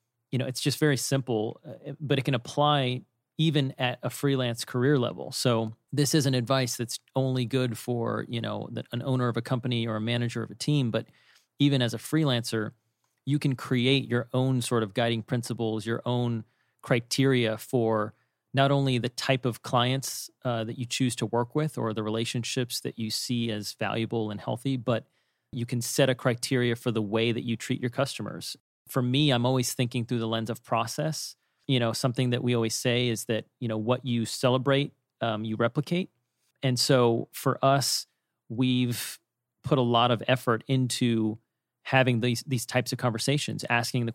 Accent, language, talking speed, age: American, English, 190 wpm, 30-49